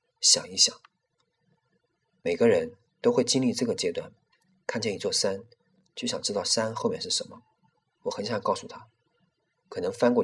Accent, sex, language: native, male, Chinese